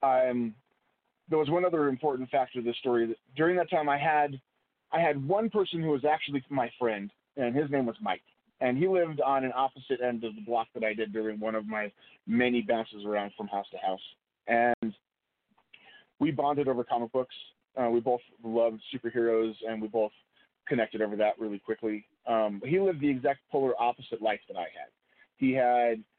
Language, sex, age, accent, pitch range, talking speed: English, male, 30-49, American, 115-135 Hz, 195 wpm